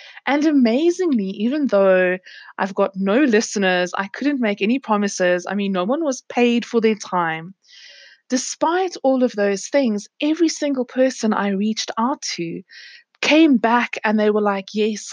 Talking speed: 165 wpm